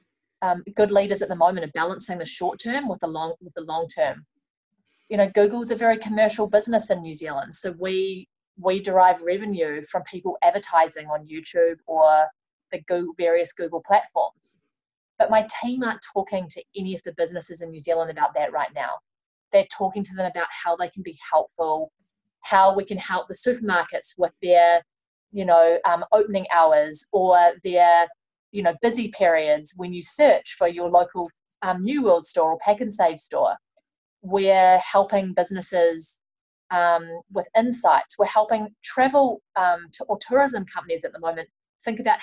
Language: English